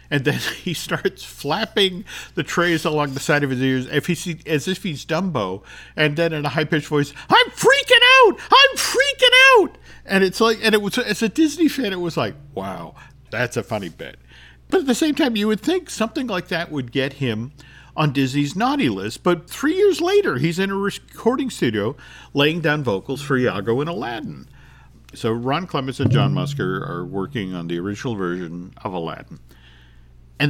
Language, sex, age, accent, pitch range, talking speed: English, male, 50-69, American, 110-170 Hz, 190 wpm